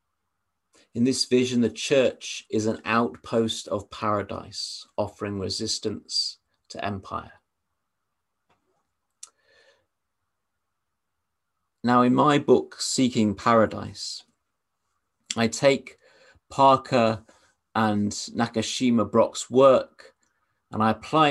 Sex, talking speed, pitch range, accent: male, 85 wpm, 100-125 Hz, British